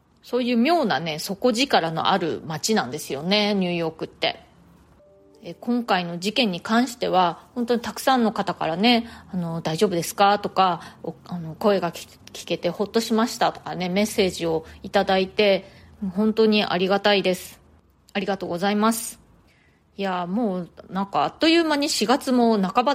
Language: Japanese